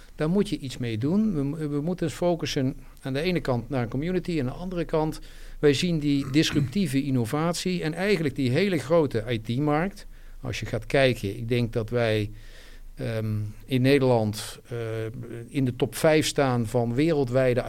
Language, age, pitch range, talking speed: Dutch, 50-69, 120-165 Hz, 175 wpm